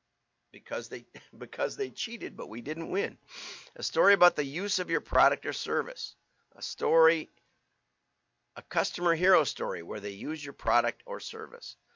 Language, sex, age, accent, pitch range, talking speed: English, male, 50-69, American, 115-165 Hz, 160 wpm